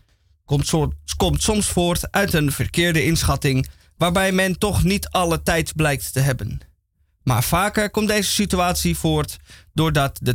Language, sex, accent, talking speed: Dutch, male, Dutch, 140 wpm